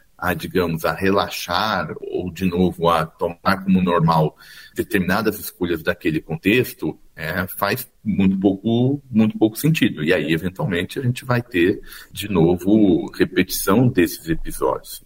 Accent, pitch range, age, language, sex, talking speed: Brazilian, 90-125 Hz, 50-69, Portuguese, male, 135 wpm